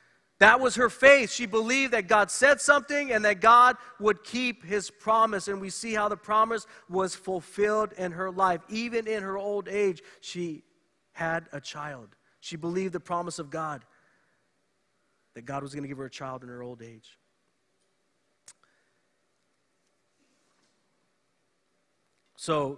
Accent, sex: American, male